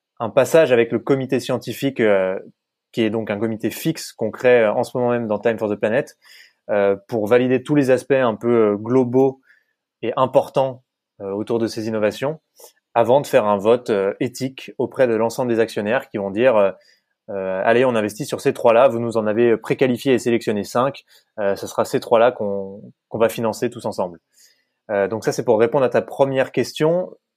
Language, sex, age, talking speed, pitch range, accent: French, male, 20-39, 200 wpm, 110-135 Hz, French